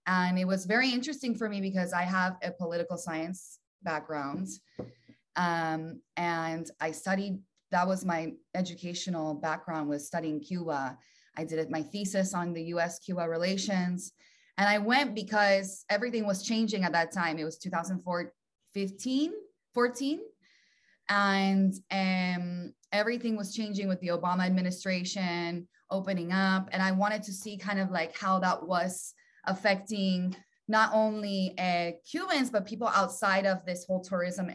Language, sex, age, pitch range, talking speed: English, female, 20-39, 170-200 Hz, 145 wpm